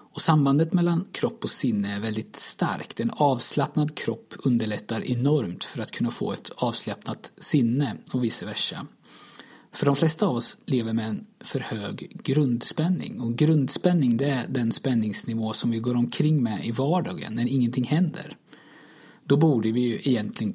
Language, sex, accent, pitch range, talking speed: Swedish, male, native, 115-150 Hz, 165 wpm